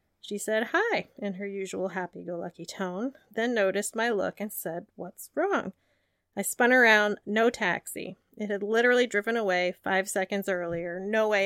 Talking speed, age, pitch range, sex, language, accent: 160 wpm, 30-49, 185-225 Hz, female, English, American